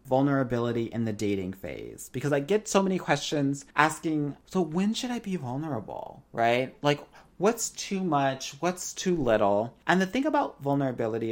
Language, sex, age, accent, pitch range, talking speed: English, male, 30-49, American, 110-155 Hz, 165 wpm